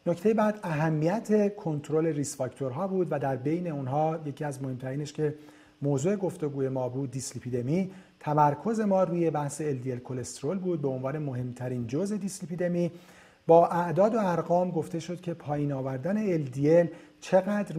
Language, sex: Persian, male